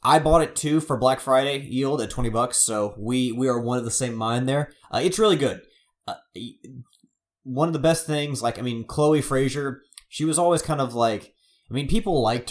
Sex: male